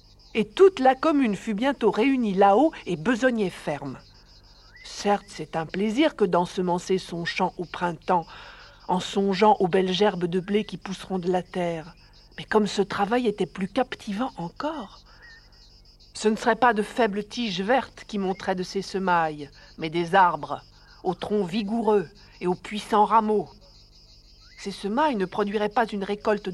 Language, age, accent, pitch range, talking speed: French, 60-79, French, 180-215 Hz, 160 wpm